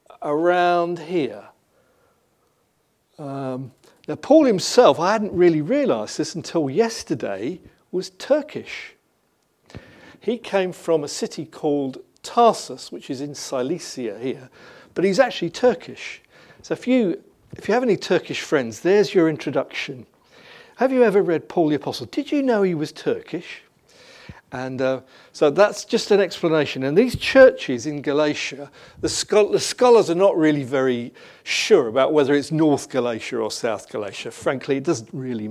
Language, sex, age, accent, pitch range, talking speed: English, male, 50-69, British, 135-210 Hz, 150 wpm